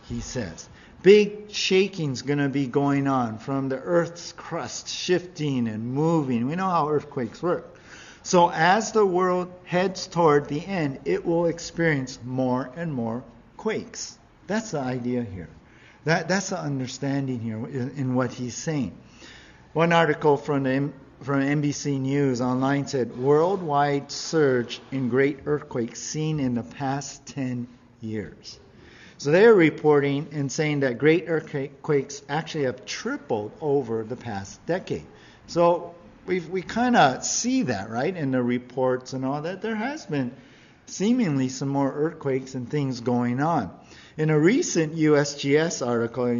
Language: English